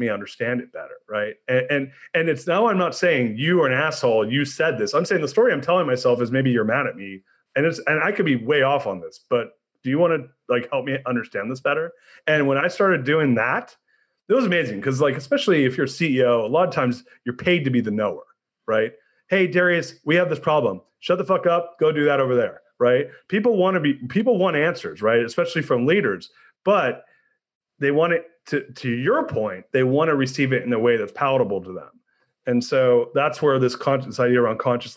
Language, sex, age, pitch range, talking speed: English, male, 30-49, 125-170 Hz, 235 wpm